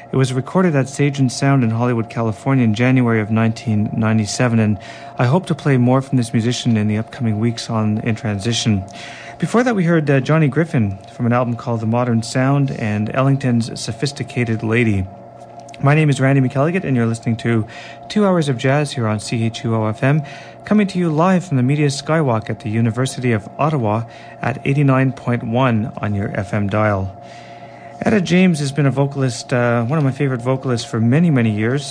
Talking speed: 190 wpm